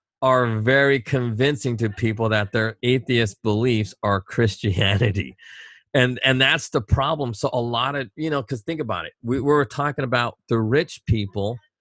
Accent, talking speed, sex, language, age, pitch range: American, 170 wpm, male, English, 40-59, 110-145 Hz